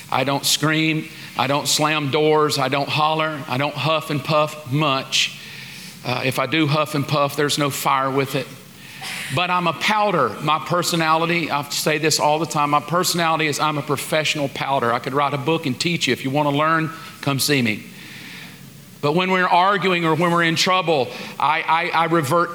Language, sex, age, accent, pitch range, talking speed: English, male, 40-59, American, 140-165 Hz, 200 wpm